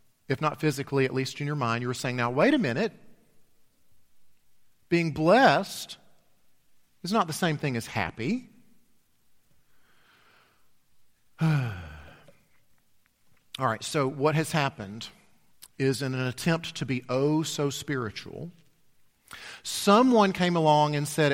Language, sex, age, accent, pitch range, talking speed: English, male, 40-59, American, 130-185 Hz, 125 wpm